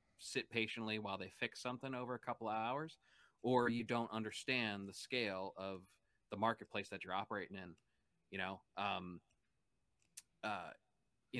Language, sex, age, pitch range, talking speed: English, male, 30-49, 100-120 Hz, 155 wpm